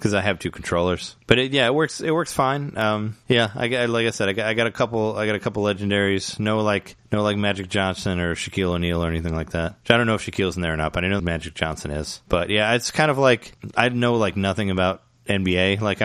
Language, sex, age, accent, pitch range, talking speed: English, male, 20-39, American, 85-110 Hz, 275 wpm